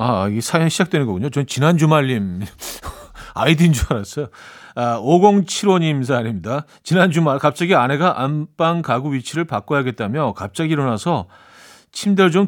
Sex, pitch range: male, 110-155 Hz